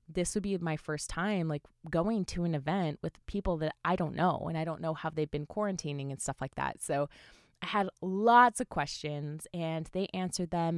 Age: 20-39